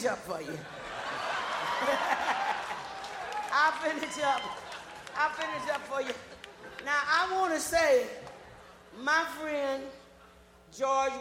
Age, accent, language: 40-59, American, English